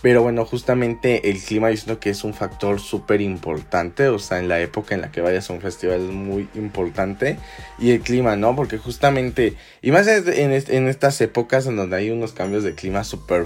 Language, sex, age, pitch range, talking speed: Spanish, male, 20-39, 95-120 Hz, 210 wpm